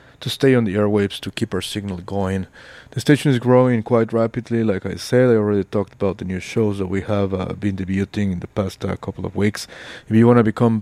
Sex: male